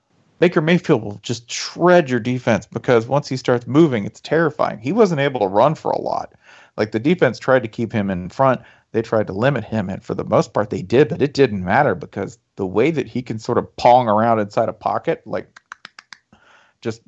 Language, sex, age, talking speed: English, male, 40-59, 220 wpm